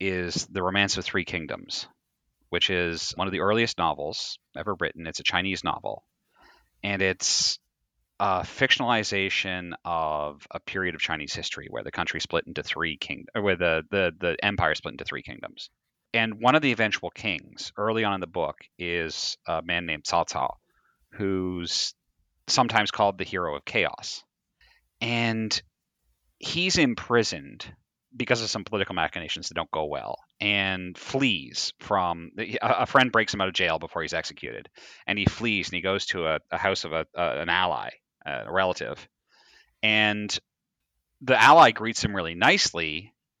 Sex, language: male, English